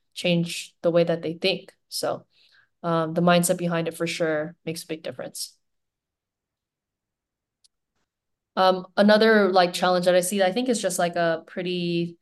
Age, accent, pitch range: 20-39, American, 165-185 Hz